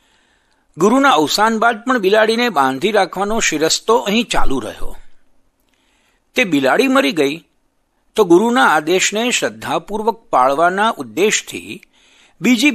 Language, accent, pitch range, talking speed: Gujarati, native, 155-225 Hz, 105 wpm